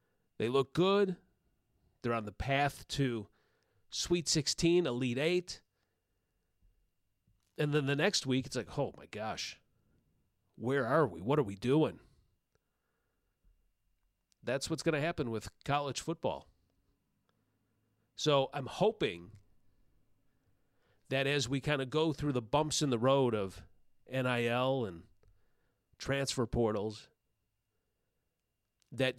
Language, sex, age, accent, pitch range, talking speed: English, male, 40-59, American, 110-145 Hz, 120 wpm